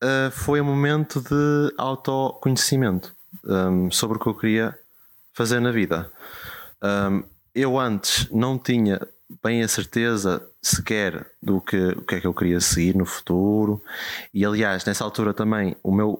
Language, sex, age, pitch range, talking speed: Portuguese, male, 20-39, 95-120 Hz, 155 wpm